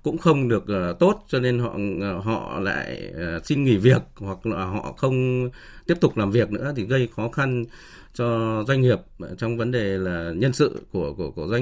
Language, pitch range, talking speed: Vietnamese, 100-130 Hz, 205 wpm